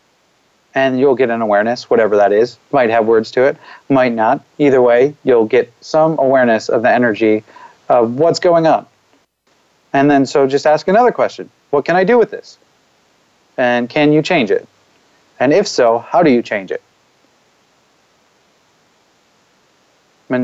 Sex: male